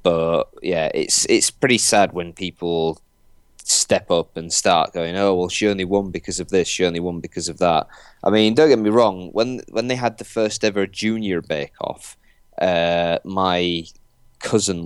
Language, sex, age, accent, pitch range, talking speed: English, male, 30-49, British, 90-115 Hz, 180 wpm